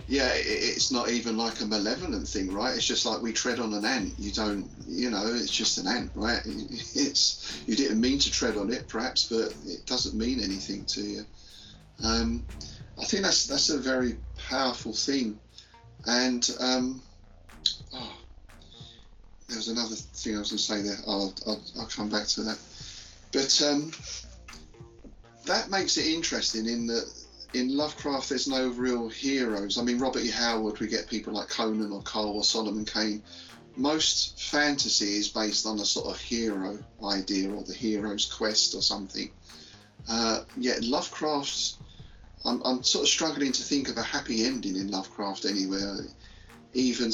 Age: 40-59